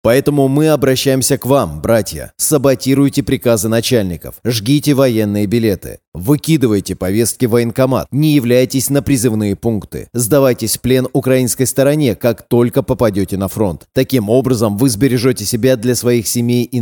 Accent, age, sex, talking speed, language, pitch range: native, 30-49, male, 140 wpm, Russian, 110-135 Hz